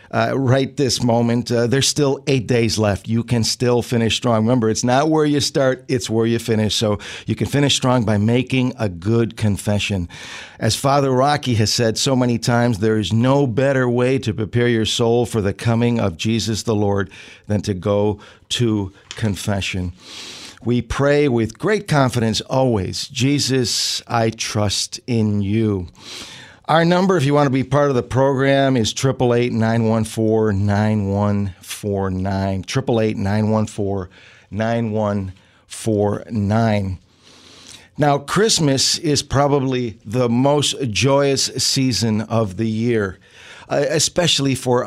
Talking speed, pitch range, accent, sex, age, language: 140 wpm, 105-130 Hz, American, male, 50-69, English